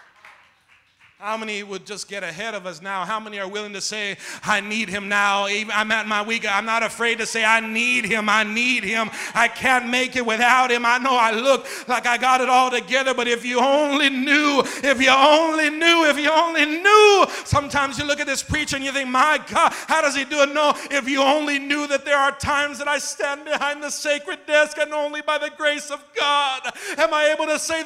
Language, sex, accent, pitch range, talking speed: English, male, American, 255-325 Hz, 230 wpm